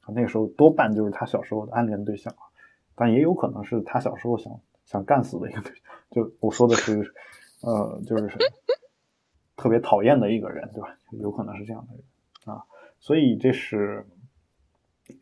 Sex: male